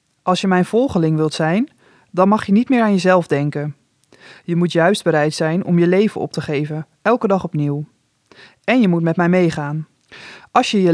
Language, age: Dutch, 20-39